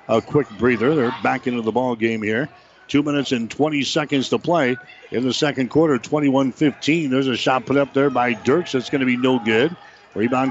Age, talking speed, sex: 60-79, 210 wpm, male